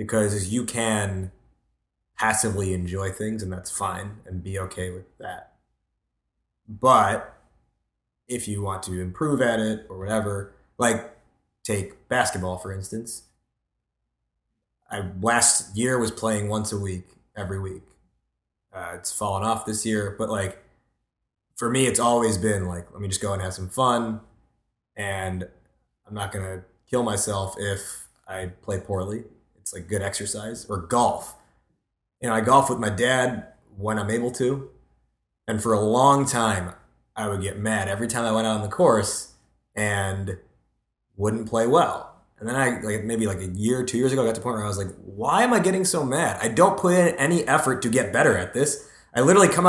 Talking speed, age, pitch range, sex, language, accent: 180 wpm, 20-39, 95-130 Hz, male, English, American